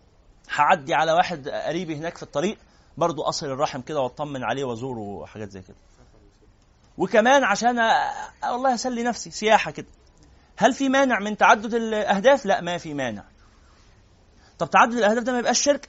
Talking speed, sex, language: 160 wpm, male, Arabic